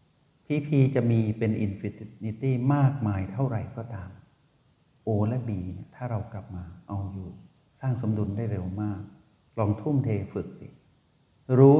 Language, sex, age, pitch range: Thai, male, 60-79, 100-130 Hz